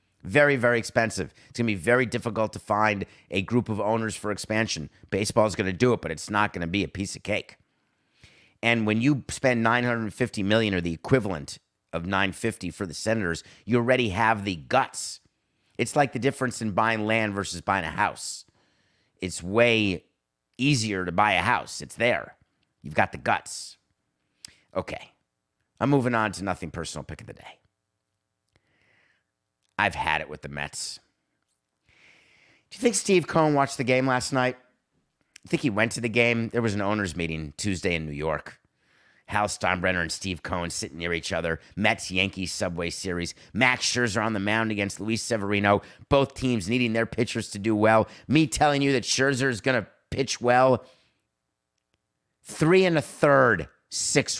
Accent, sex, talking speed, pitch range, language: American, male, 175 wpm, 90-120 Hz, English